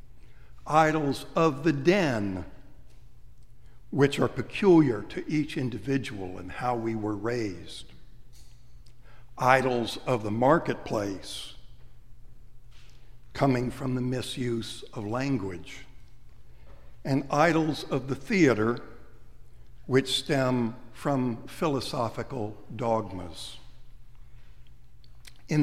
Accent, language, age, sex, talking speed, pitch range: American, English, 60-79, male, 85 wpm, 110-140 Hz